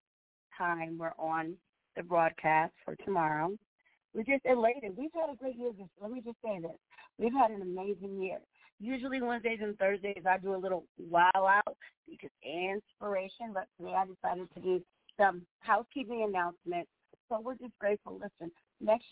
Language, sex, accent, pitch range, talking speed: English, female, American, 170-210 Hz, 165 wpm